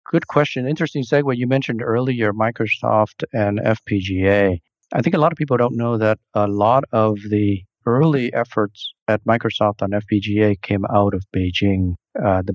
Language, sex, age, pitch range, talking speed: English, male, 40-59, 95-115 Hz, 165 wpm